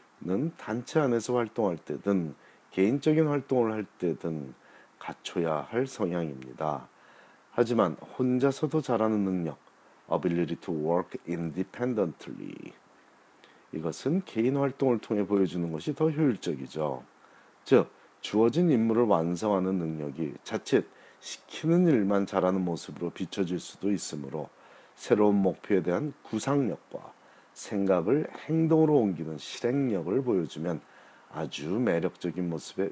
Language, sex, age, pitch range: Korean, male, 40-59, 85-125 Hz